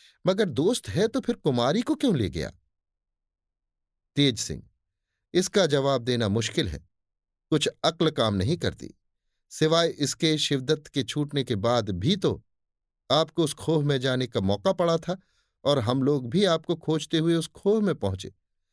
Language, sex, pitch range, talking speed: Hindi, male, 100-165 Hz, 165 wpm